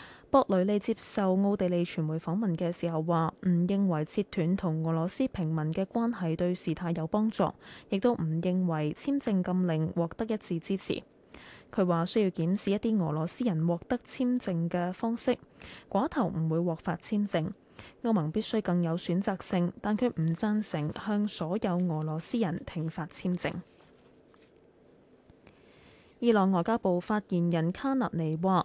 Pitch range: 165-215 Hz